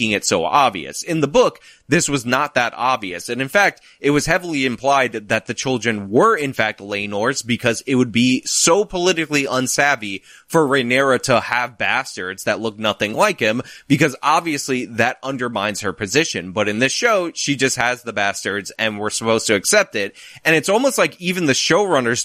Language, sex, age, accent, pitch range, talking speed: English, male, 20-39, American, 115-155 Hz, 190 wpm